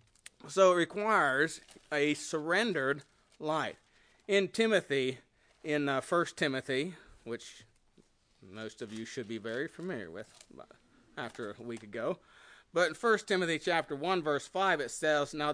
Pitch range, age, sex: 145-190 Hz, 40-59, male